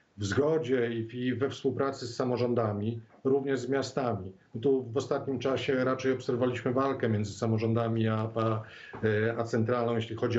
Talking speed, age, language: 140 wpm, 40-59, Polish